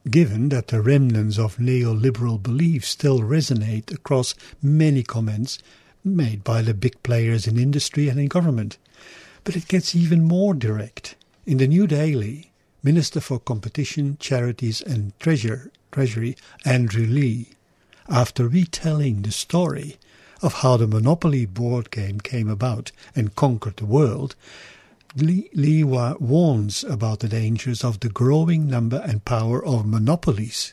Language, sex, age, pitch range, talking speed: English, male, 60-79, 115-155 Hz, 135 wpm